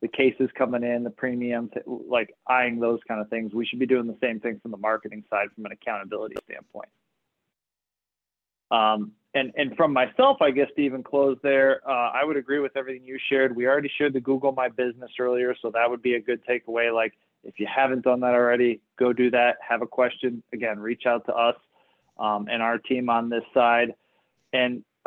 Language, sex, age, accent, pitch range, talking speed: English, male, 20-39, American, 120-140 Hz, 210 wpm